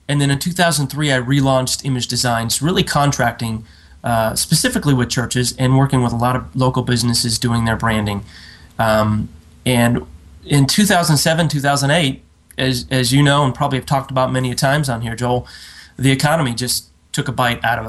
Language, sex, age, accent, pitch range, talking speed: English, male, 30-49, American, 120-140 Hz, 180 wpm